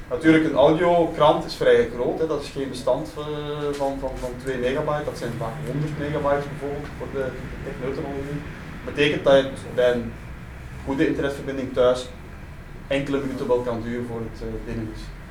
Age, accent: 30-49, Dutch